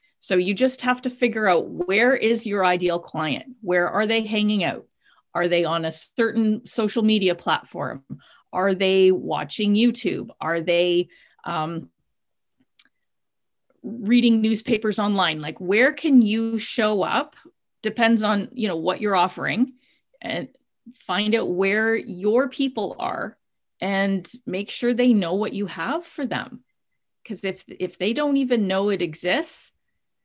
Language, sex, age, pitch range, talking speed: English, female, 30-49, 190-250 Hz, 145 wpm